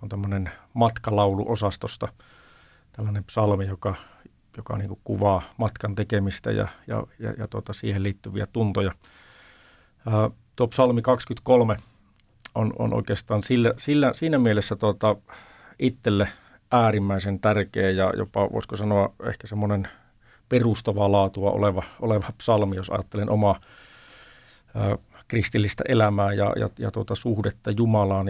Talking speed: 115 wpm